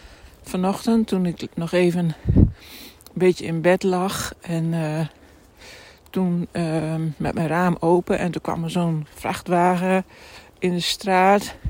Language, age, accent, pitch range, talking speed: Dutch, 60-79, Dutch, 170-200 Hz, 140 wpm